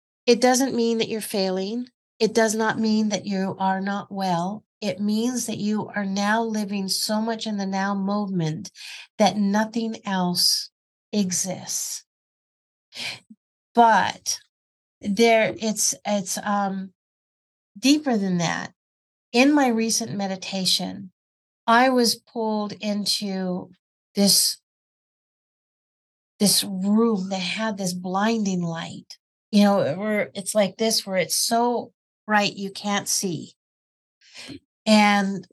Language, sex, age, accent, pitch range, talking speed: English, female, 50-69, American, 185-220 Hz, 115 wpm